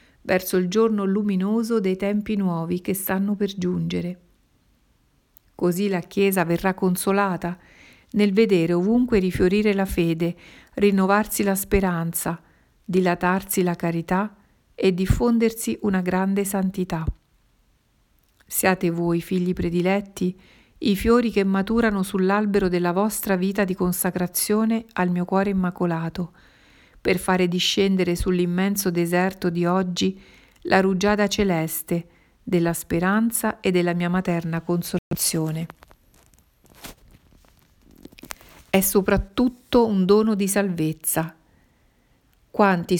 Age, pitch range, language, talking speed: 50-69, 175-200 Hz, Italian, 105 wpm